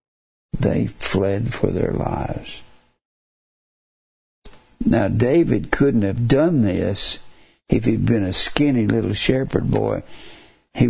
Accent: American